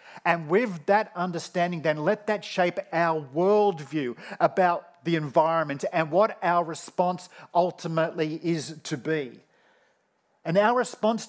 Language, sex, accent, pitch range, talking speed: English, male, Australian, 140-185 Hz, 130 wpm